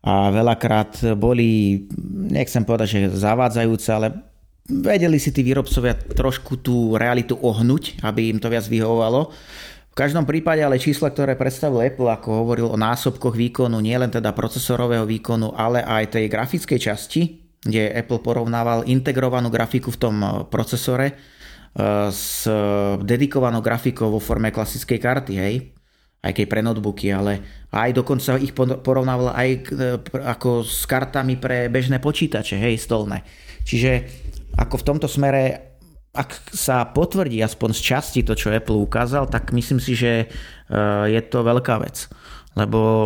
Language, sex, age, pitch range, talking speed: Slovak, male, 30-49, 110-130 Hz, 140 wpm